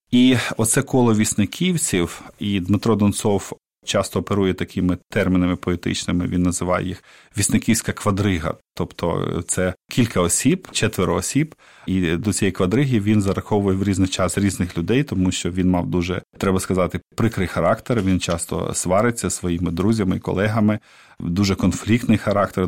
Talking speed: 140 wpm